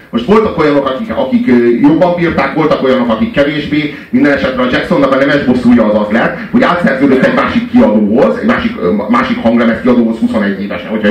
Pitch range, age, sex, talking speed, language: 140-230 Hz, 30-49, male, 180 wpm, Hungarian